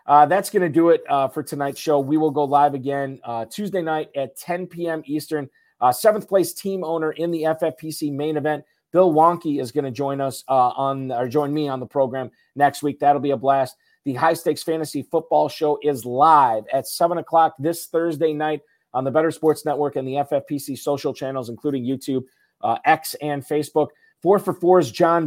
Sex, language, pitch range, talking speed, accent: male, English, 135-165 Hz, 210 wpm, American